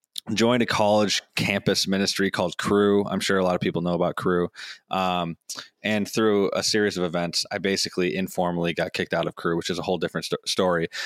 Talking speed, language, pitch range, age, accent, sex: 205 wpm, English, 90-110 Hz, 20-39, American, male